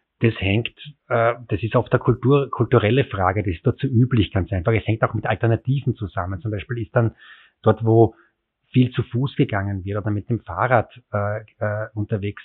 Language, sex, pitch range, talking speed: German, male, 100-120 Hz, 185 wpm